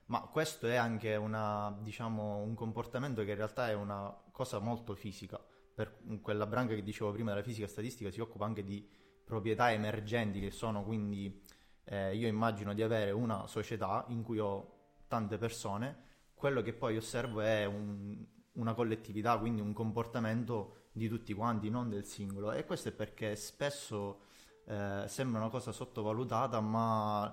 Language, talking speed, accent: Italian, 165 wpm, native